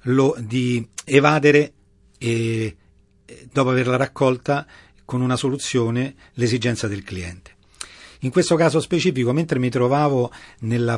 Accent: native